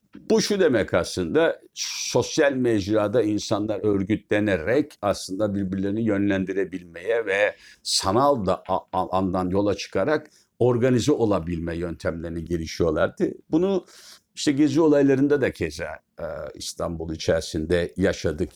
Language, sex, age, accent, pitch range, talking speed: Turkish, male, 60-79, native, 95-110 Hz, 95 wpm